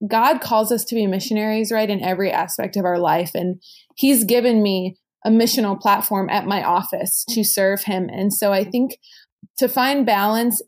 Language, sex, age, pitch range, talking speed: English, female, 20-39, 190-220 Hz, 185 wpm